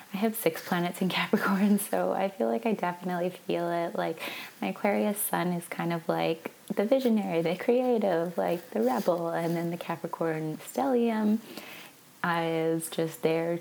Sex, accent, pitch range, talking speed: female, American, 165-205 Hz, 165 wpm